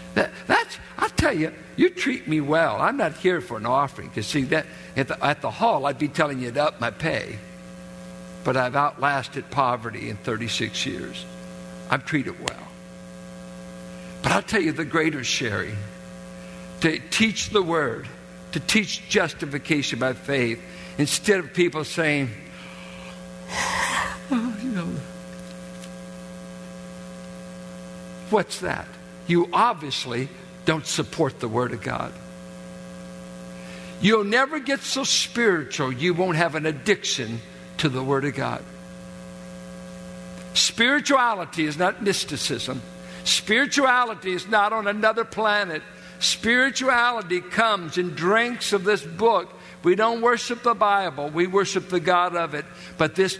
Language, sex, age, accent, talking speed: English, male, 60-79, American, 135 wpm